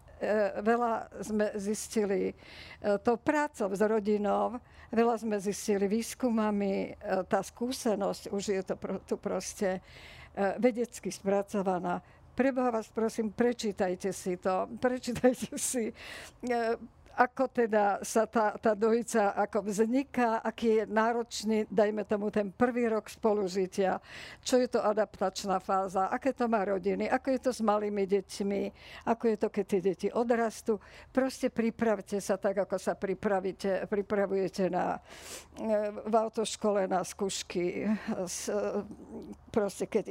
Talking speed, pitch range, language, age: 120 wpm, 200-235 Hz, Slovak, 50-69